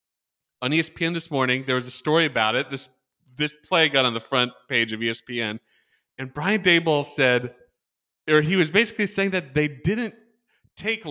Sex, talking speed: male, 180 wpm